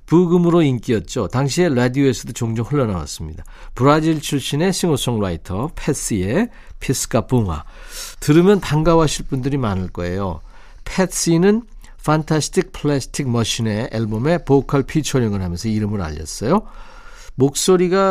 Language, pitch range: Korean, 110-155 Hz